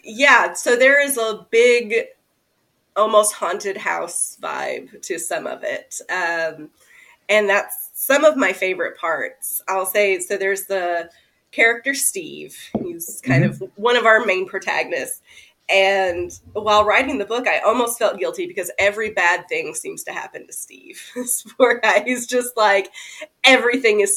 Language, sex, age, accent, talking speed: English, female, 20-39, American, 150 wpm